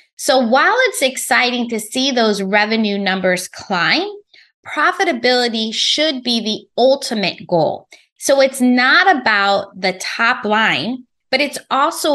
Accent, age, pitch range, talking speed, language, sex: American, 20-39, 200-280 Hz, 130 wpm, English, female